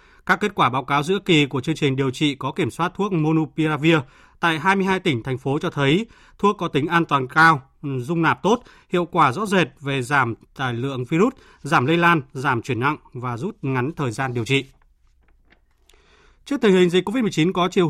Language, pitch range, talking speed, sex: Vietnamese, 140-180 Hz, 210 wpm, male